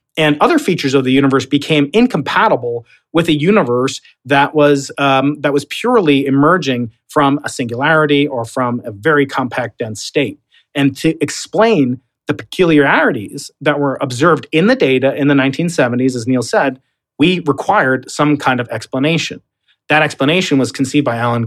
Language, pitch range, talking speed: English, 130-155 Hz, 160 wpm